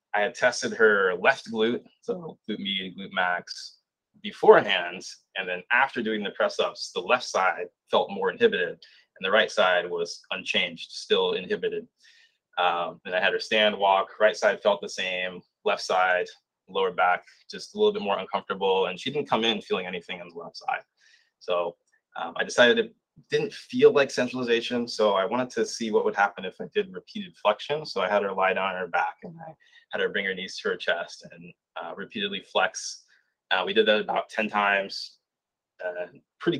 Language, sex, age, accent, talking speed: English, male, 20-39, American, 195 wpm